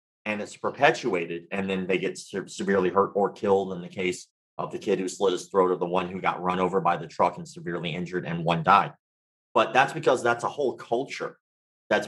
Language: English